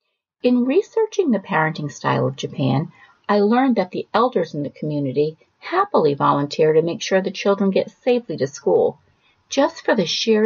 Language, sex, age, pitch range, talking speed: English, female, 50-69, 165-260 Hz, 170 wpm